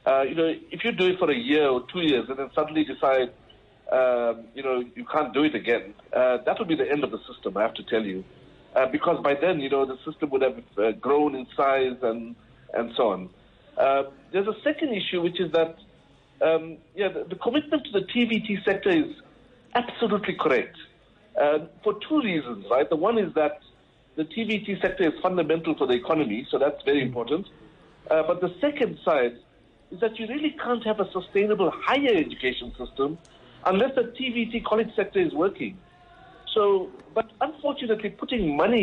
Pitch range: 145-225 Hz